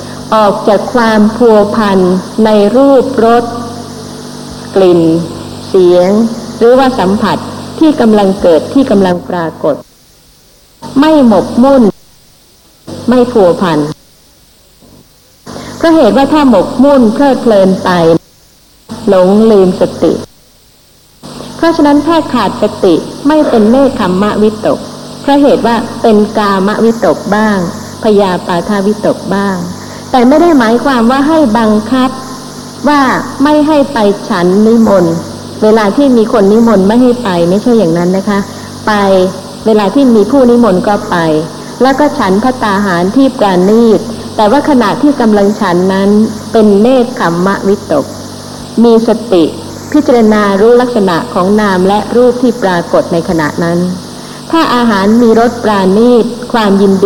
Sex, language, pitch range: female, Thai, 195-250 Hz